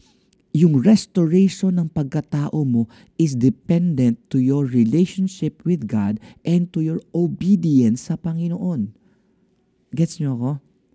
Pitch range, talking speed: 110-170 Hz, 115 wpm